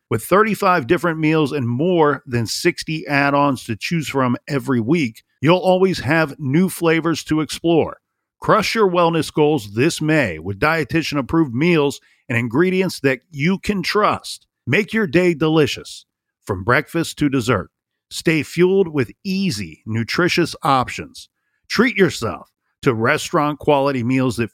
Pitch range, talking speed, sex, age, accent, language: 125-170 Hz, 135 wpm, male, 50-69, American, English